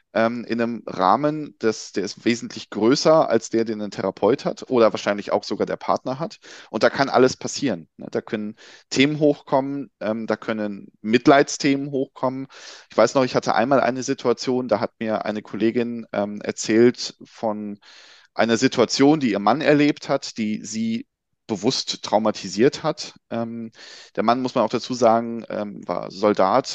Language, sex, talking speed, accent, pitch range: German, male, 155 wpm, German, 110-145 Hz